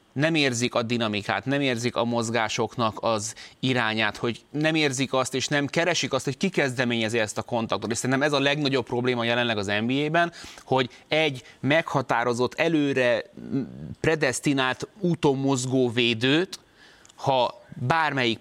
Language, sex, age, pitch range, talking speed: Hungarian, male, 30-49, 115-140 Hz, 140 wpm